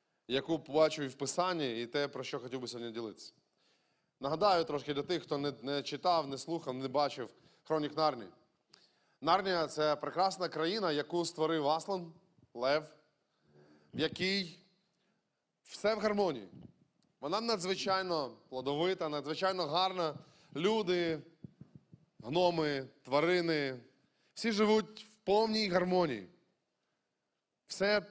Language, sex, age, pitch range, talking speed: Ukrainian, male, 20-39, 145-195 Hz, 120 wpm